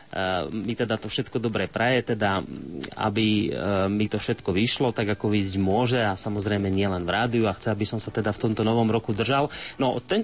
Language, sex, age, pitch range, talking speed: Slovak, male, 30-49, 110-130 Hz, 200 wpm